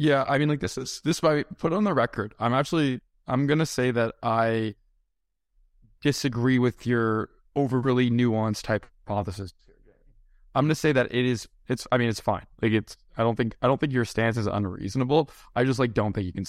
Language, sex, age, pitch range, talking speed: English, male, 20-39, 100-120 Hz, 205 wpm